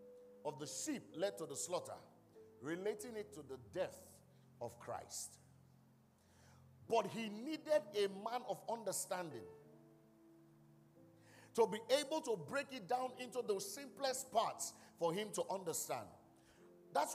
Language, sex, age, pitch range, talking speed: English, male, 50-69, 155-255 Hz, 130 wpm